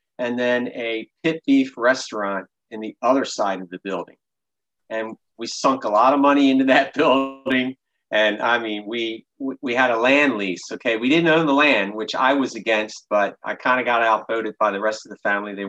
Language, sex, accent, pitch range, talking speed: English, male, American, 105-130 Hz, 210 wpm